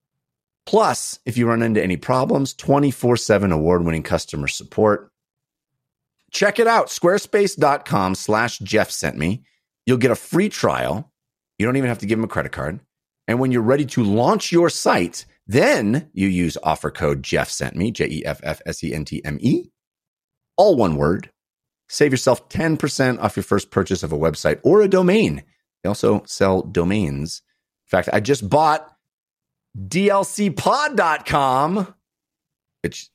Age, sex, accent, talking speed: 30-49, male, American, 160 wpm